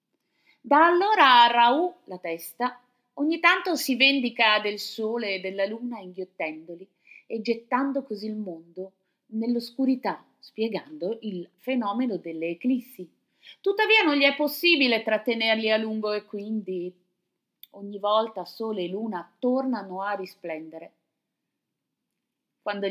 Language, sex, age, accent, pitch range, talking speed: Italian, female, 30-49, native, 180-245 Hz, 120 wpm